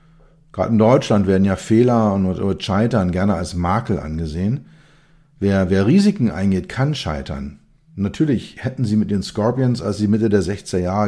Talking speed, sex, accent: 160 wpm, male, German